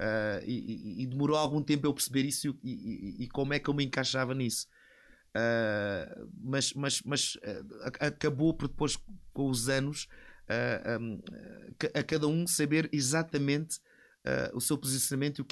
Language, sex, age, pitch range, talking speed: Portuguese, male, 30-49, 120-150 Hz, 170 wpm